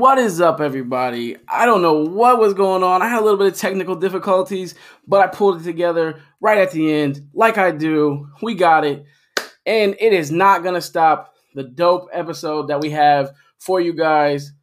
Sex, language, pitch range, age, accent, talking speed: male, English, 145-190 Hz, 20-39, American, 205 wpm